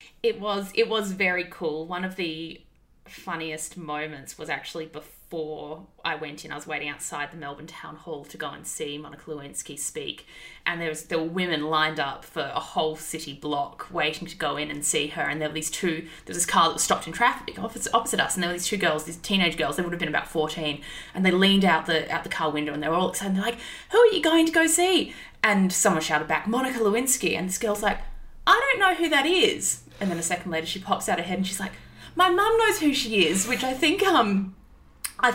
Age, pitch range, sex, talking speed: 20-39, 160-210 Hz, female, 250 wpm